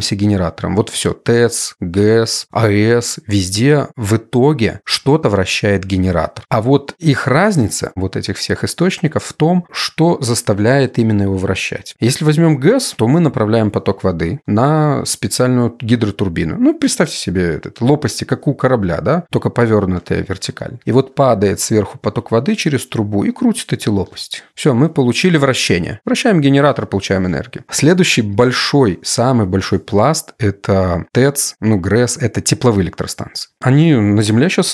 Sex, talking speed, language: male, 150 wpm, Russian